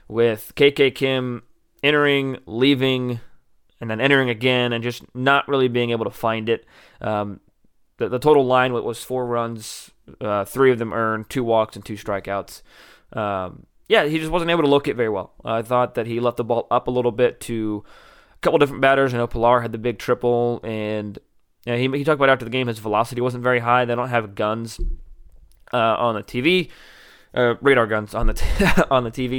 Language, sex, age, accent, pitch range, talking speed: English, male, 20-39, American, 110-130 Hz, 210 wpm